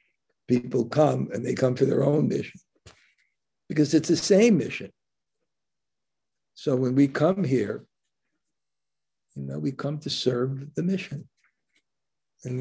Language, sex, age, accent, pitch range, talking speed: English, male, 60-79, American, 105-135 Hz, 135 wpm